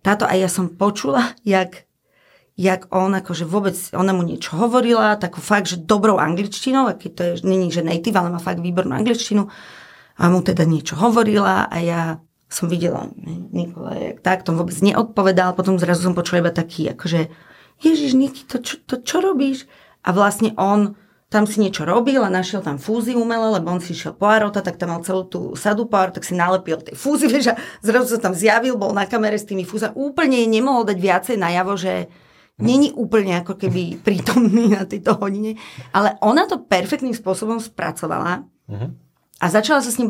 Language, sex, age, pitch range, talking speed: Slovak, female, 30-49, 175-225 Hz, 185 wpm